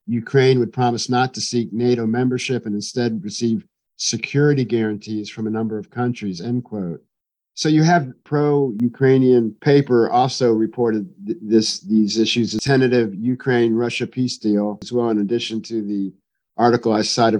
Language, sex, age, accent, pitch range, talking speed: English, male, 50-69, American, 115-130 Hz, 150 wpm